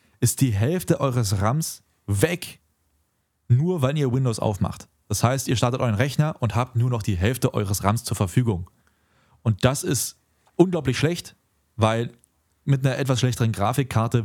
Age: 30-49